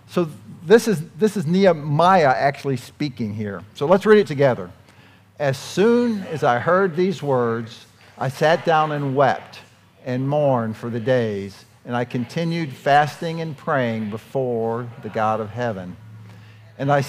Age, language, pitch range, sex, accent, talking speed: 50-69, English, 115-155 Hz, male, American, 155 wpm